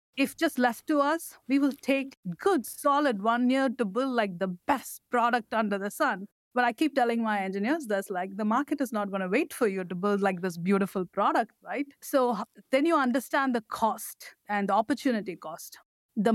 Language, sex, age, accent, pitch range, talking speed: English, female, 50-69, Indian, 195-260 Hz, 205 wpm